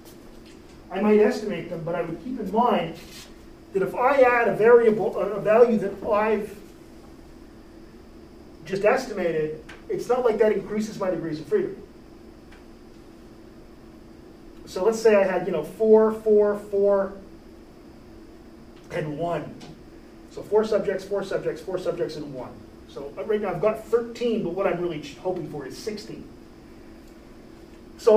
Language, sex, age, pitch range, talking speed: English, male, 40-59, 175-220 Hz, 145 wpm